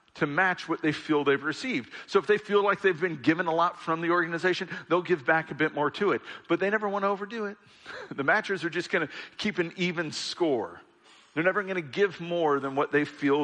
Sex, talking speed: male, 245 wpm